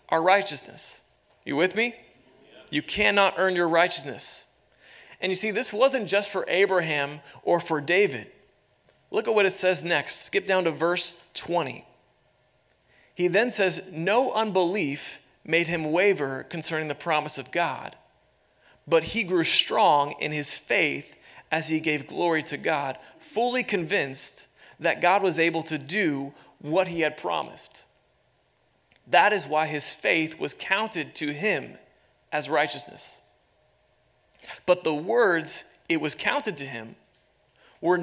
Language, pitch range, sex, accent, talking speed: English, 150-190 Hz, male, American, 140 wpm